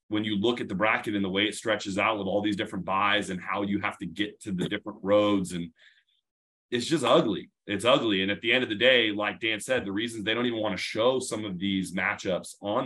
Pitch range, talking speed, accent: 95-115 Hz, 260 wpm, American